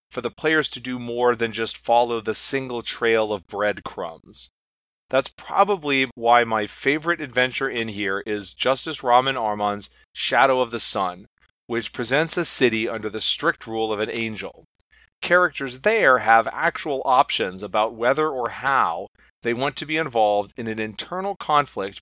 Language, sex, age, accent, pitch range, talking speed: English, male, 30-49, American, 110-150 Hz, 160 wpm